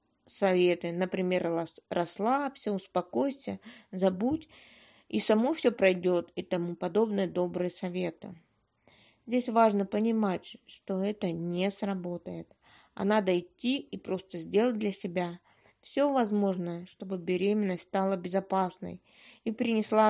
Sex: female